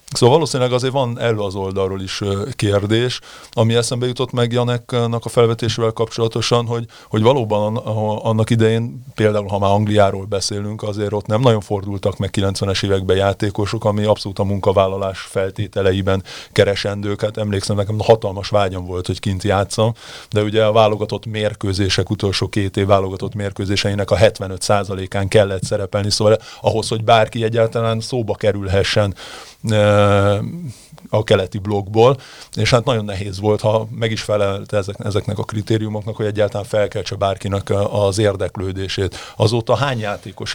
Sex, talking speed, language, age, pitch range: male, 145 wpm, Hungarian, 30-49, 100-115 Hz